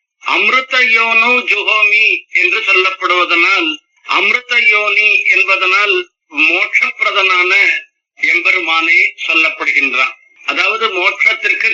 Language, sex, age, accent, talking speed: Tamil, male, 60-79, native, 70 wpm